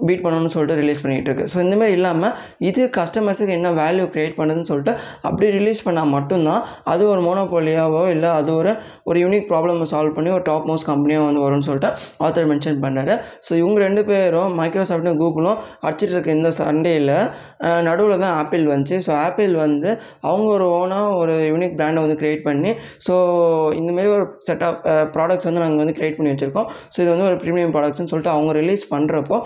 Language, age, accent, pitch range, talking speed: Tamil, 20-39, native, 155-185 Hz, 180 wpm